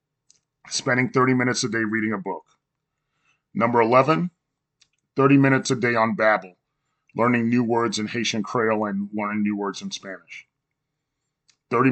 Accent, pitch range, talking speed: American, 105-130 Hz, 145 wpm